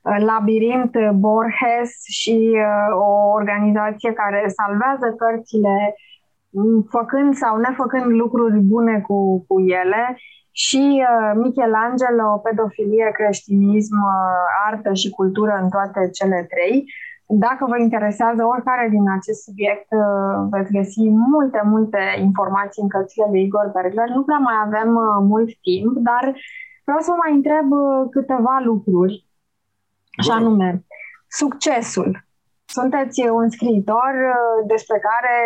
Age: 20-39